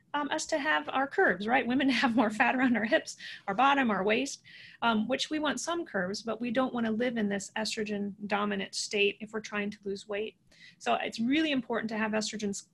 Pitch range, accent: 210-265 Hz, American